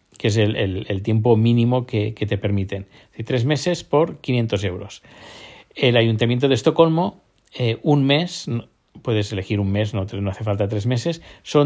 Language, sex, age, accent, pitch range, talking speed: Spanish, male, 50-69, Spanish, 110-145 Hz, 170 wpm